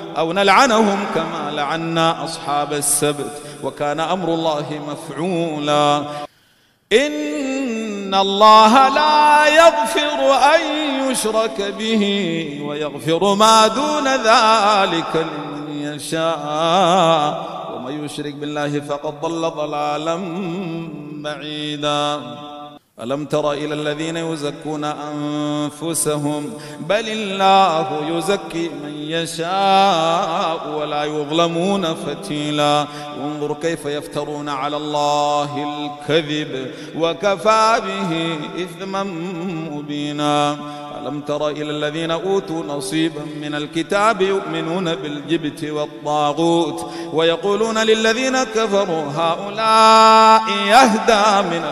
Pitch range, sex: 150-195 Hz, male